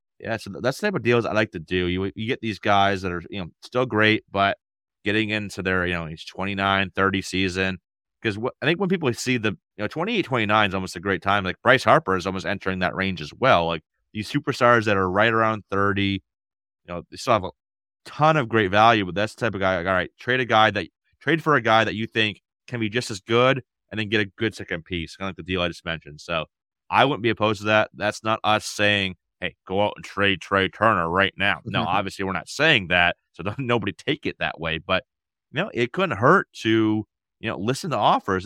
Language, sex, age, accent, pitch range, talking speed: English, male, 30-49, American, 90-110 Hz, 255 wpm